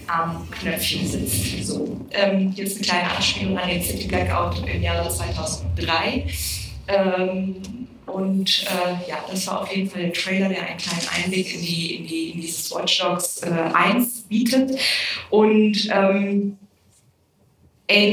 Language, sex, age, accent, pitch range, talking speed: German, female, 20-39, German, 170-200 Hz, 140 wpm